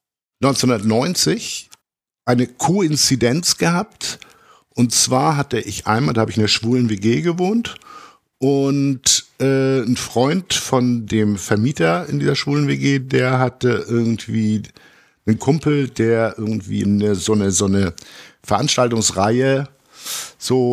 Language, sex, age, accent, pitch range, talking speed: German, male, 50-69, German, 105-135 Hz, 120 wpm